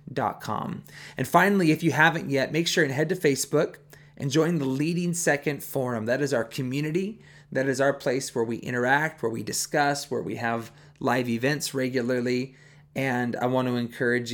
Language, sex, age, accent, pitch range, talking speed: English, male, 30-49, American, 120-150 Hz, 190 wpm